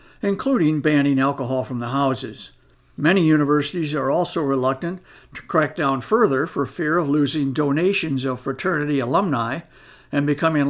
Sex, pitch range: male, 135-165 Hz